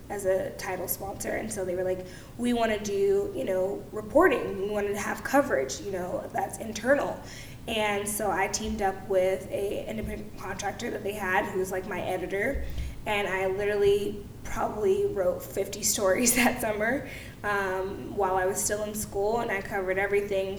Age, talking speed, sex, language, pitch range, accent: 20-39, 180 wpm, female, English, 185-210 Hz, American